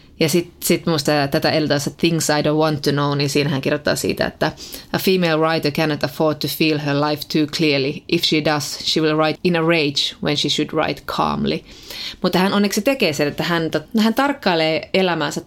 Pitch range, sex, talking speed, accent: 150-185 Hz, female, 205 wpm, native